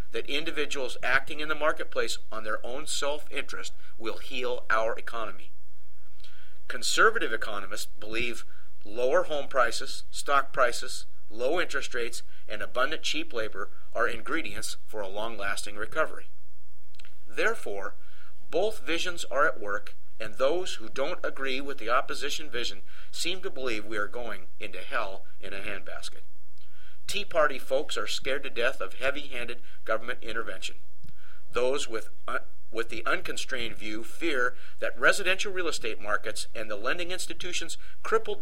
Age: 50-69